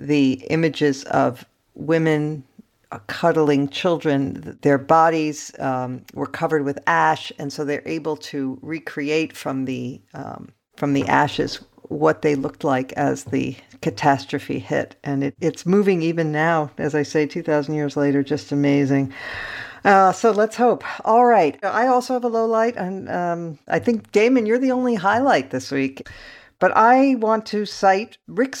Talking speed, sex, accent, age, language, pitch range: 160 wpm, female, American, 50-69, English, 145-220 Hz